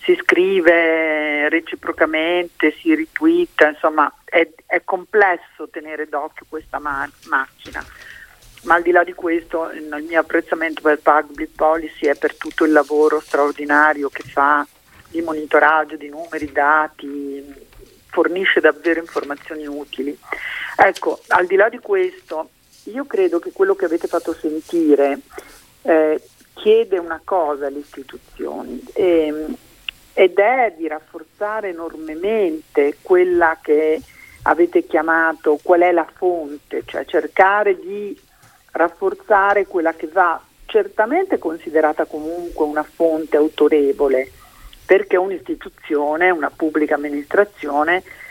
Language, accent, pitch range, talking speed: Italian, native, 150-190 Hz, 120 wpm